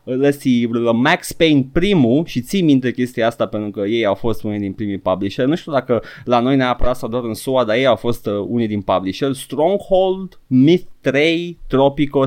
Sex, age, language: male, 20-39, Romanian